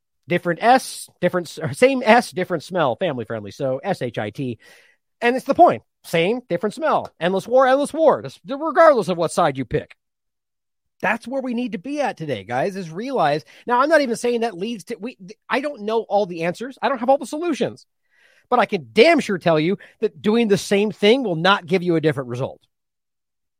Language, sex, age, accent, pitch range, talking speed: English, male, 30-49, American, 160-245 Hz, 200 wpm